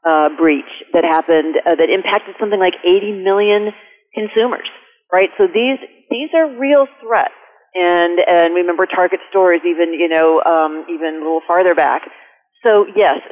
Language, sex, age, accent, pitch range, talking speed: English, female, 40-59, American, 160-195 Hz, 160 wpm